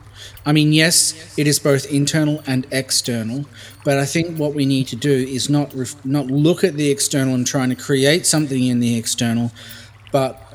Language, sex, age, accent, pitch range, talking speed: English, male, 30-49, Australian, 120-145 Hz, 195 wpm